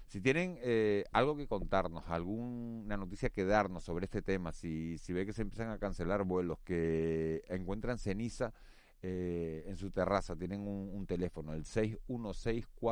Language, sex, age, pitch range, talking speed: Spanish, male, 40-59, 80-110 Hz, 160 wpm